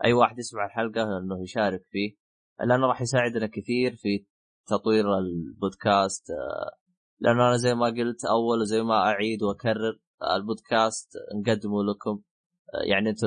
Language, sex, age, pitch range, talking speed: Arabic, male, 20-39, 100-125 Hz, 130 wpm